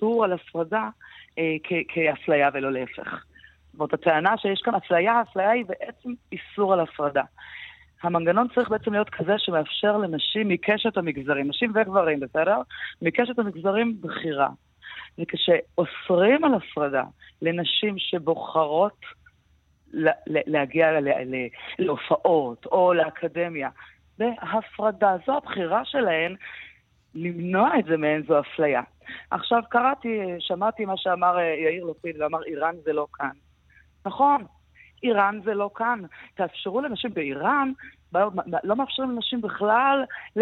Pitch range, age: 160-220 Hz, 30-49